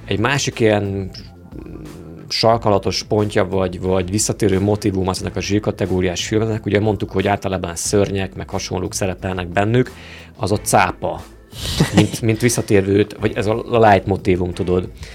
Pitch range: 95-110 Hz